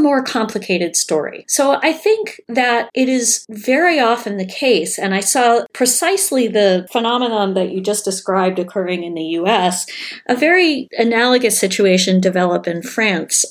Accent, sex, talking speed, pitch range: American, female, 150 wpm, 180-240 Hz